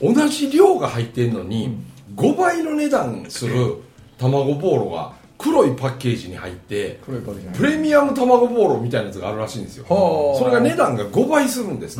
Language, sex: Japanese, male